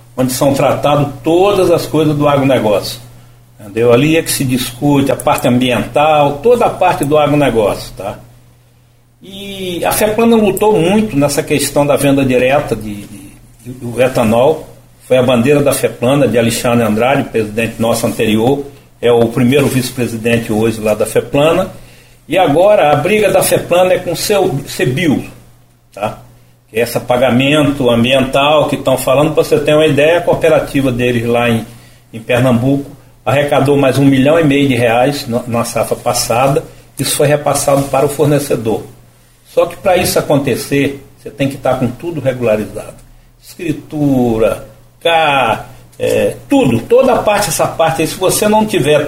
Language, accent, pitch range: Portuguese, Brazilian, 120-155 Hz